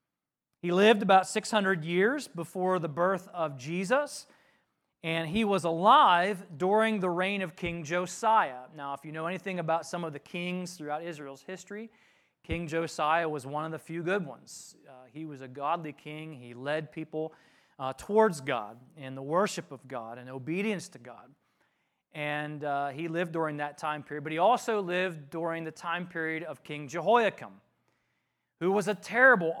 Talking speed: 175 wpm